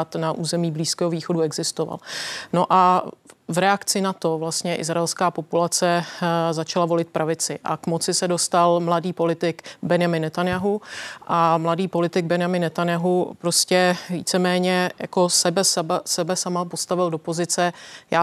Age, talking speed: 30-49, 135 wpm